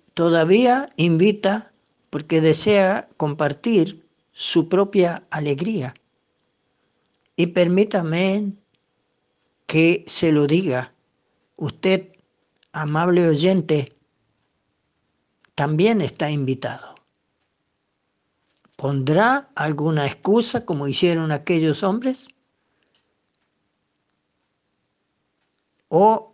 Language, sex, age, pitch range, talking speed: Spanish, male, 60-79, 150-200 Hz, 65 wpm